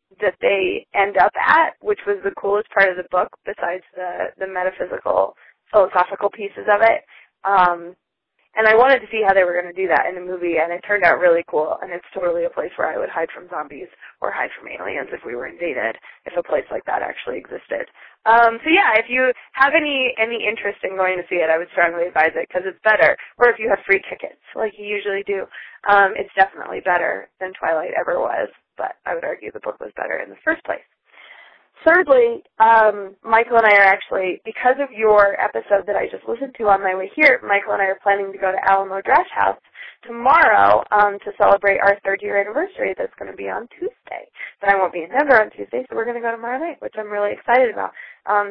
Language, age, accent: English, 20-39, American